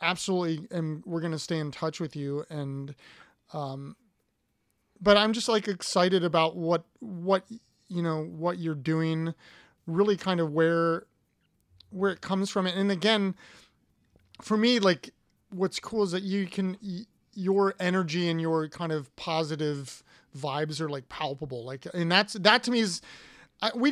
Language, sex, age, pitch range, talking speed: English, male, 30-49, 155-195 Hz, 160 wpm